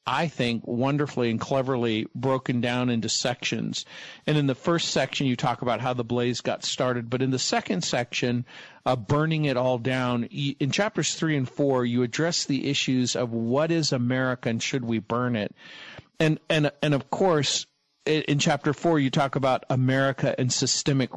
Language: English